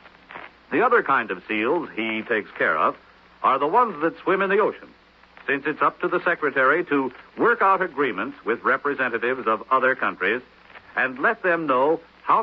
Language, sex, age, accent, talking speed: English, male, 70-89, American, 180 wpm